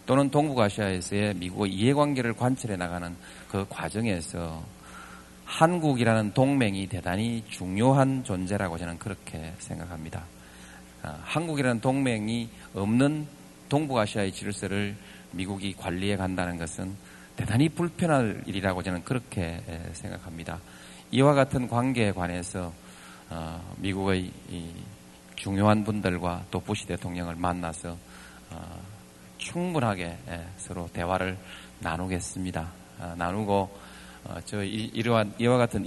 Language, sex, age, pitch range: Korean, male, 40-59, 85-115 Hz